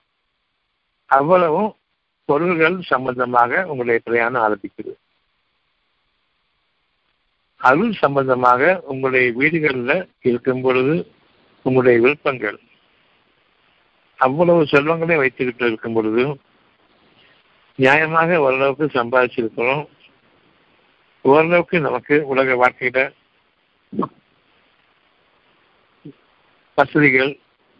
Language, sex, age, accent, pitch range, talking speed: Tamil, male, 60-79, native, 125-155 Hz, 60 wpm